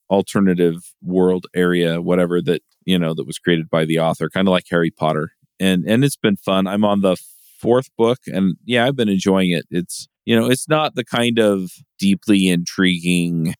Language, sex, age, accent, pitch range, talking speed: English, male, 40-59, American, 85-100 Hz, 195 wpm